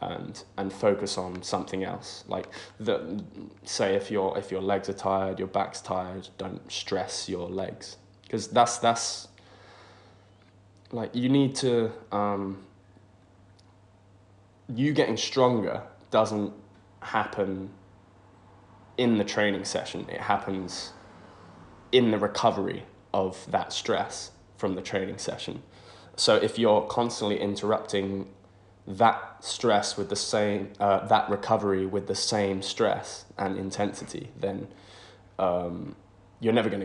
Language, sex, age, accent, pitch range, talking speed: English, male, 20-39, British, 95-105 Hz, 125 wpm